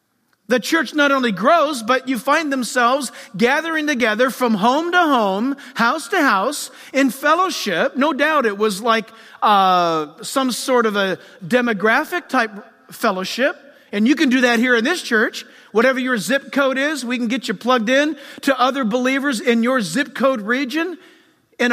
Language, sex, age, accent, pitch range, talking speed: English, male, 40-59, American, 235-305 Hz, 170 wpm